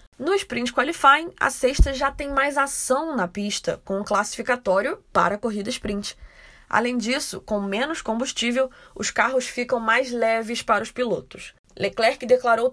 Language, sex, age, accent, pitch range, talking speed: Portuguese, female, 20-39, Brazilian, 210-260 Hz, 155 wpm